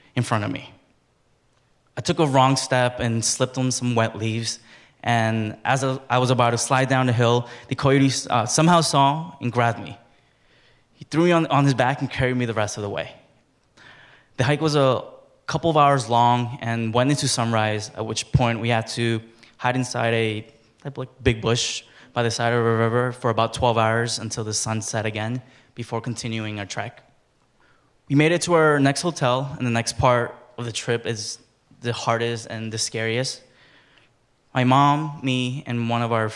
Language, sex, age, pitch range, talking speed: English, male, 20-39, 115-130 Hz, 190 wpm